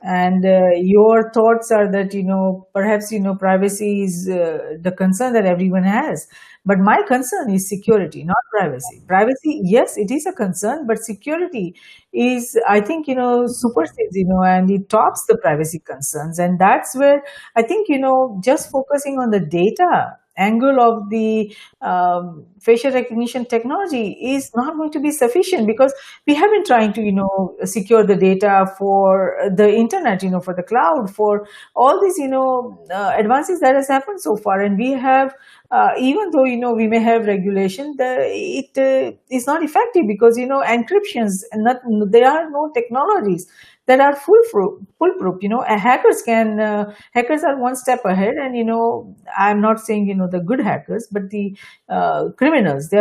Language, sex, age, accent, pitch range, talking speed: English, female, 50-69, Indian, 195-270 Hz, 185 wpm